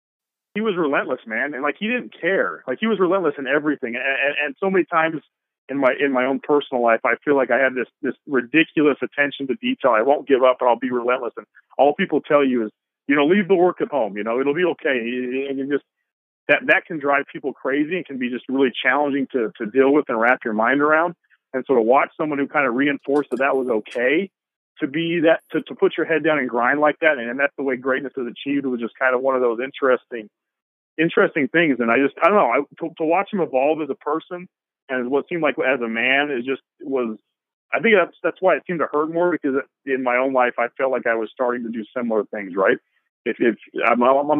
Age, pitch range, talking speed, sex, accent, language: 40-59, 125-155 Hz, 255 wpm, male, American, English